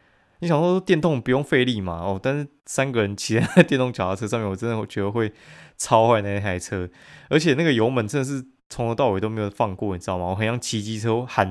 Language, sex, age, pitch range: Chinese, male, 20-39, 100-130 Hz